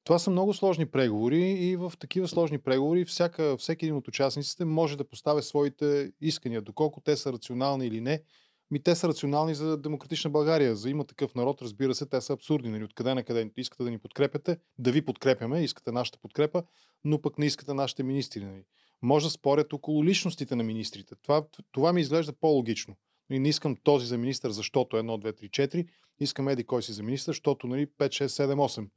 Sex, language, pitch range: male, Bulgarian, 125-160 Hz